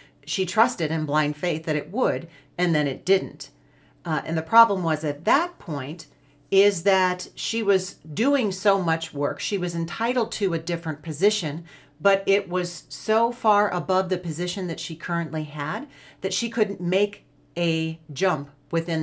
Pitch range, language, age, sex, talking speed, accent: 145-195 Hz, English, 40-59, female, 170 wpm, American